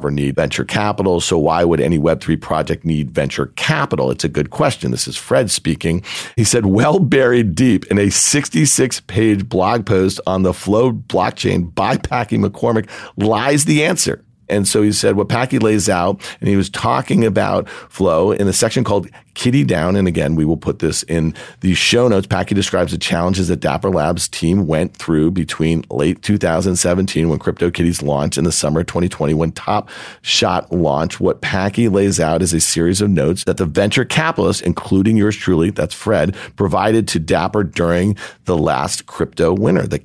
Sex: male